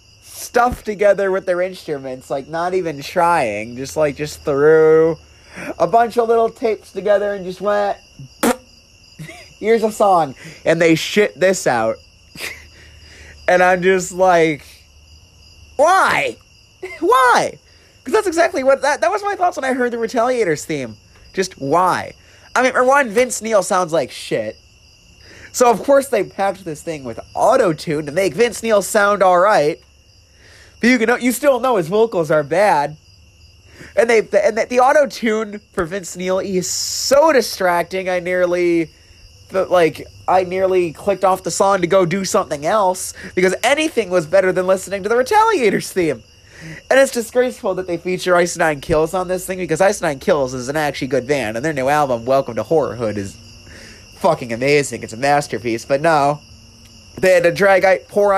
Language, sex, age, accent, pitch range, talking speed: English, male, 30-49, American, 140-210 Hz, 170 wpm